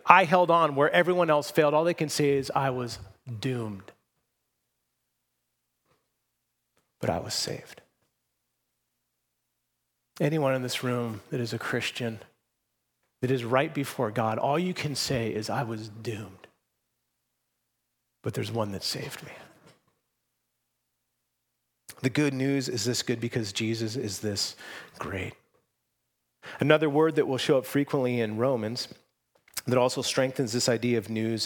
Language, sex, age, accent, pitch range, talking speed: English, male, 40-59, American, 110-135 Hz, 140 wpm